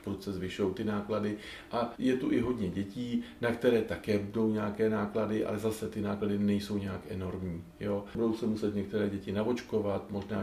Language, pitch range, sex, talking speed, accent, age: Czech, 95-105 Hz, male, 180 wpm, native, 40-59